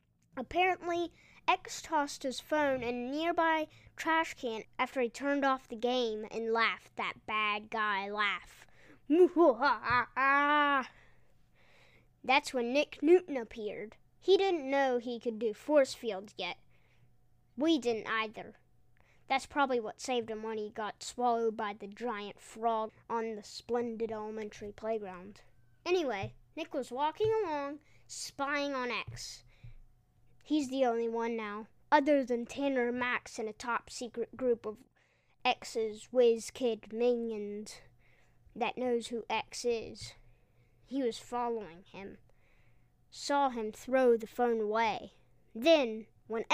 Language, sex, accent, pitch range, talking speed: English, female, American, 220-275 Hz, 130 wpm